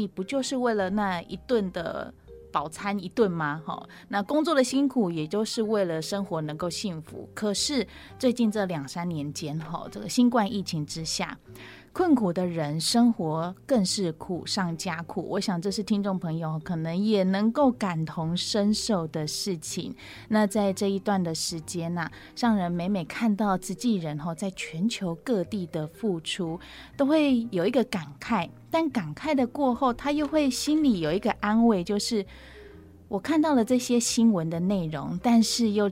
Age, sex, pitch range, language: 20-39, female, 170-230 Hz, Chinese